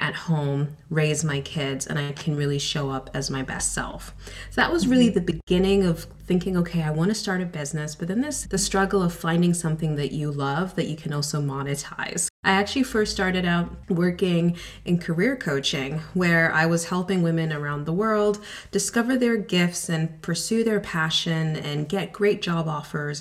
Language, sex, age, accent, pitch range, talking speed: English, female, 30-49, American, 150-190 Hz, 190 wpm